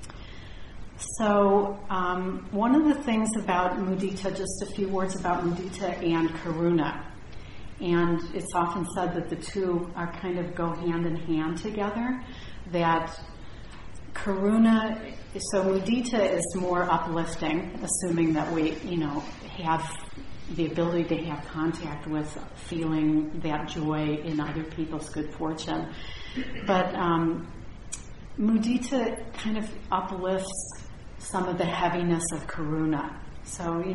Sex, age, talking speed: female, 40-59, 125 wpm